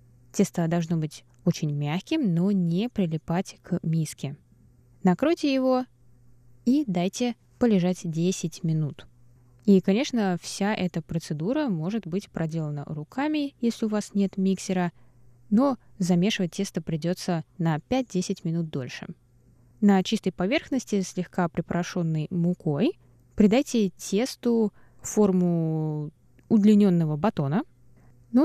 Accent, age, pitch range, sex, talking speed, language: native, 20-39, 160-210 Hz, female, 110 wpm, Russian